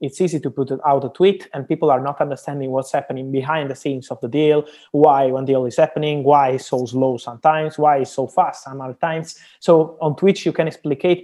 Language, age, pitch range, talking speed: English, 20-39, 135-165 Hz, 230 wpm